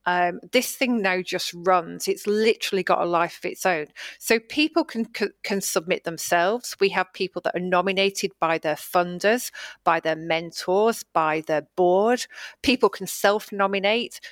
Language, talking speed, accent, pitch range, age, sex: English, 165 wpm, British, 180-220 Hz, 40-59, female